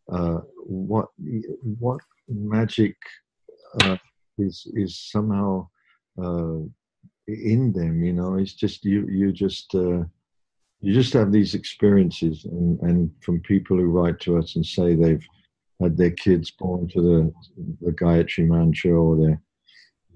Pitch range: 85-105 Hz